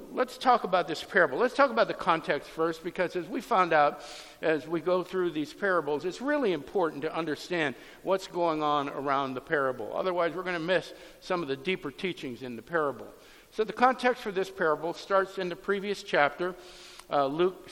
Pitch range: 155-190 Hz